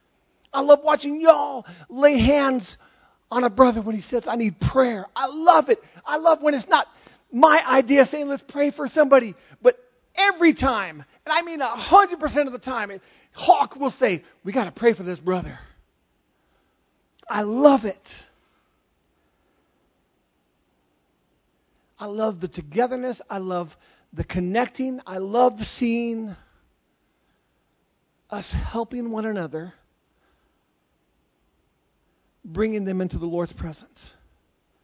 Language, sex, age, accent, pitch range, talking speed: English, male, 40-59, American, 170-270 Hz, 125 wpm